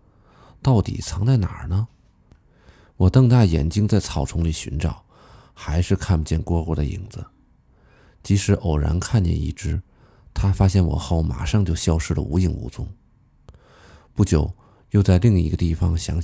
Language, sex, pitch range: Chinese, male, 85-105 Hz